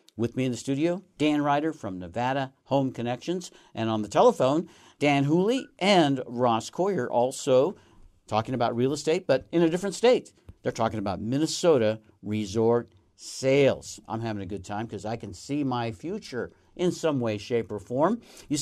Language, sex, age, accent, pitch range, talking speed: English, male, 50-69, American, 110-155 Hz, 175 wpm